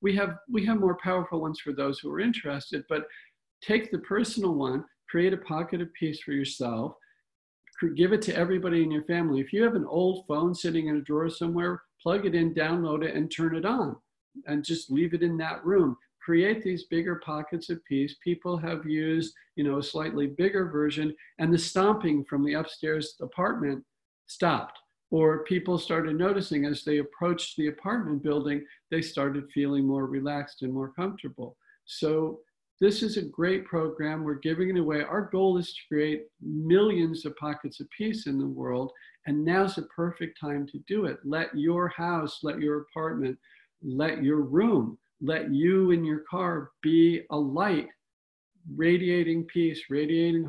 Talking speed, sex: 180 wpm, male